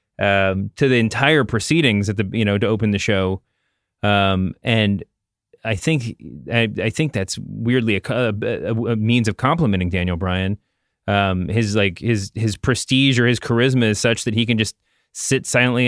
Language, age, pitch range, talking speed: English, 30-49, 105-130 Hz, 180 wpm